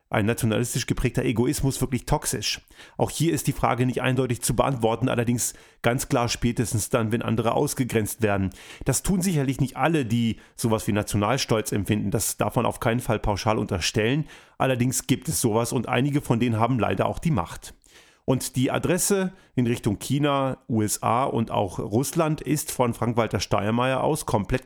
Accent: German